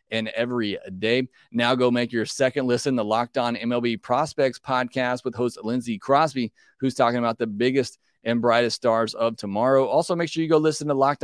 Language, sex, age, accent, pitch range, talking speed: English, male, 30-49, American, 115-140 Hz, 200 wpm